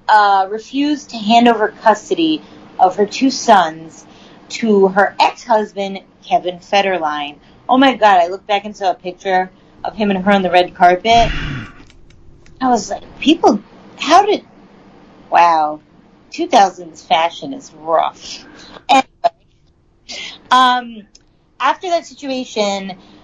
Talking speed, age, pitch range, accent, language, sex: 125 wpm, 30-49, 195-265 Hz, American, English, female